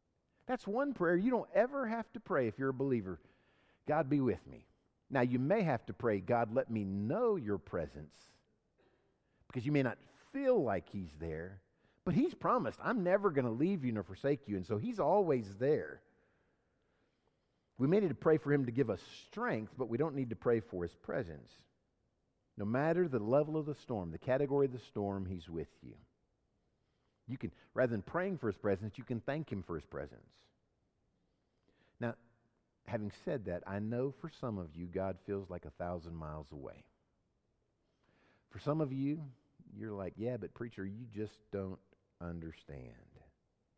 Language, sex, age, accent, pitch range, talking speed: English, male, 50-69, American, 100-145 Hz, 185 wpm